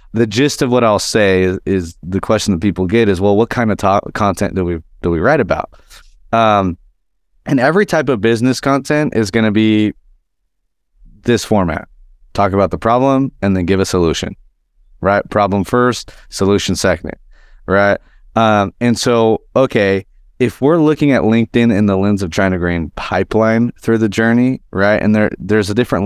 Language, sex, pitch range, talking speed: English, male, 90-115 Hz, 180 wpm